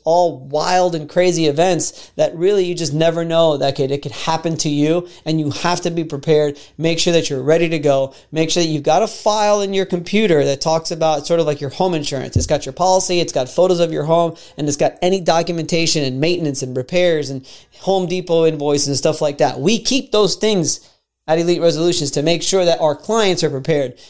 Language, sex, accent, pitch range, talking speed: English, male, American, 145-175 Hz, 225 wpm